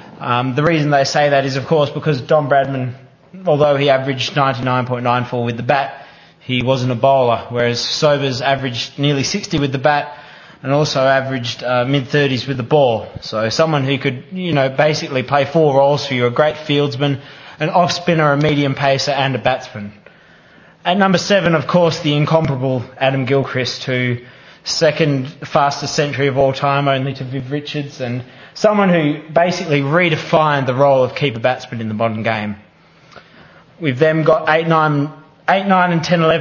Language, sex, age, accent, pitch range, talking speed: English, male, 20-39, Australian, 130-155 Hz, 170 wpm